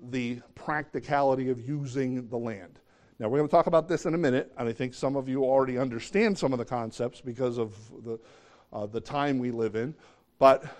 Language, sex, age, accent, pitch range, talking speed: English, male, 50-69, American, 125-145 Hz, 210 wpm